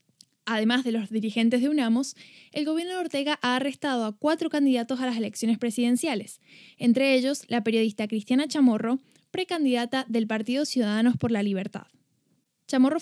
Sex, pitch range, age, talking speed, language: female, 230-290 Hz, 10-29, 150 wpm, Spanish